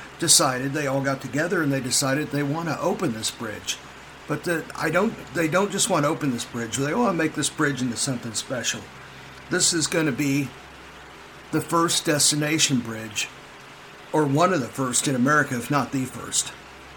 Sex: male